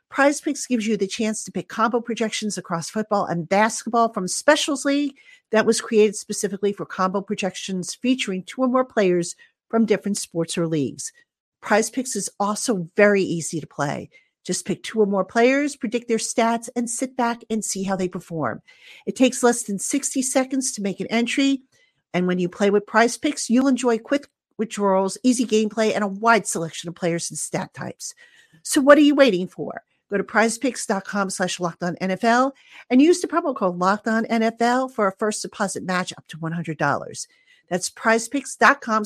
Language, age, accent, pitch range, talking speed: English, 50-69, American, 185-260 Hz, 180 wpm